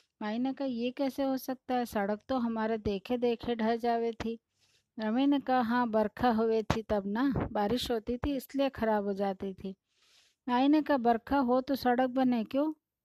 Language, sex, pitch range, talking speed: Hindi, female, 210-255 Hz, 185 wpm